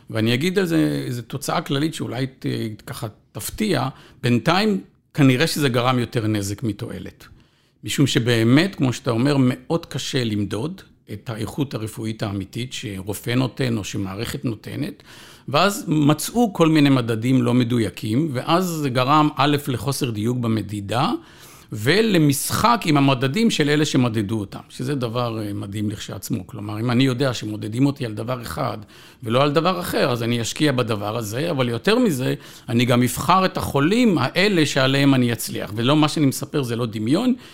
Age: 50-69